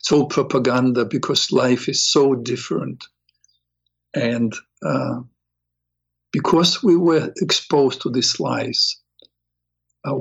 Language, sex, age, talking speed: English, male, 50-69, 100 wpm